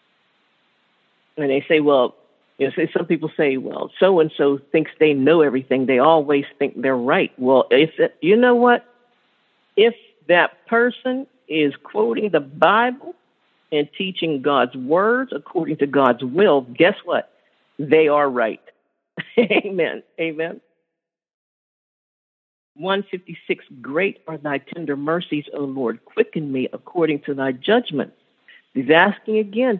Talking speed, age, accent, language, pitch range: 130 wpm, 50-69, American, English, 140-215 Hz